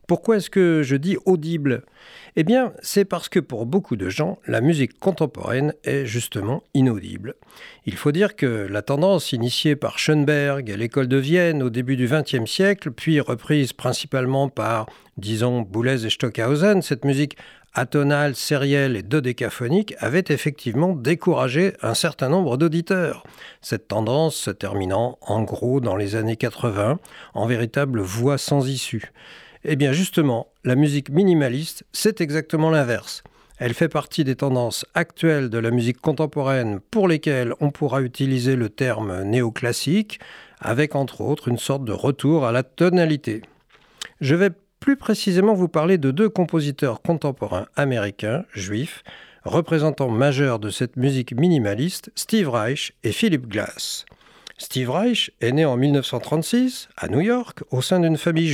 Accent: French